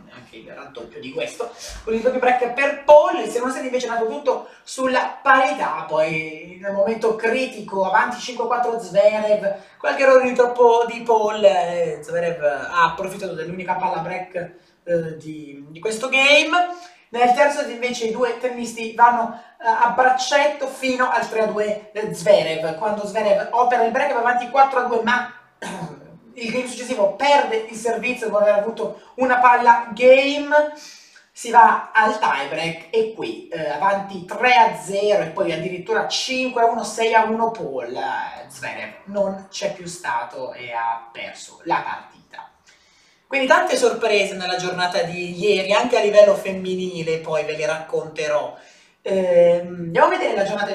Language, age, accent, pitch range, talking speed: Italian, 30-49, native, 185-250 Hz, 155 wpm